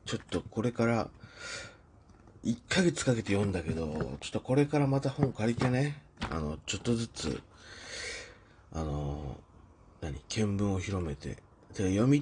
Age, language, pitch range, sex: 40-59, Japanese, 90-125 Hz, male